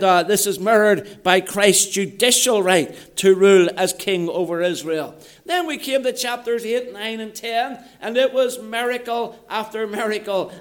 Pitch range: 205-255 Hz